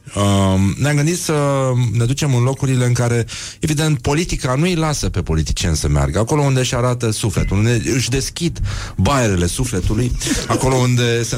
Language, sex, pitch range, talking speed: Romanian, male, 95-125 Hz, 170 wpm